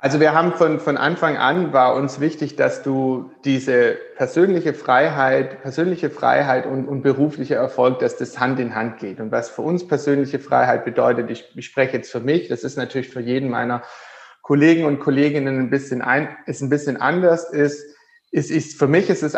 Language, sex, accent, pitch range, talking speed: German, male, German, 125-145 Hz, 195 wpm